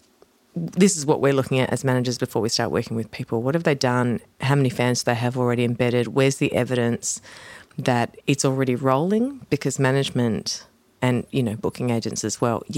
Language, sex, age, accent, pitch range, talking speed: English, female, 40-59, Australian, 125-150 Hz, 195 wpm